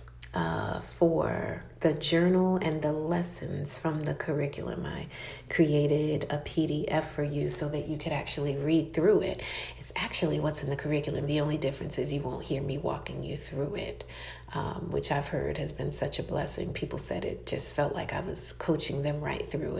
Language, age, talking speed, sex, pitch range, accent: English, 40-59, 190 wpm, female, 145-170 Hz, American